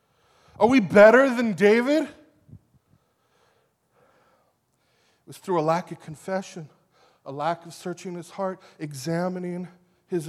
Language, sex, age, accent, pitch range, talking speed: English, male, 20-39, American, 180-235 Hz, 115 wpm